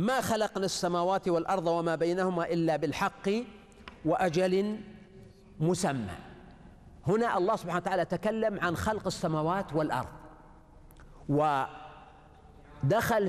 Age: 50-69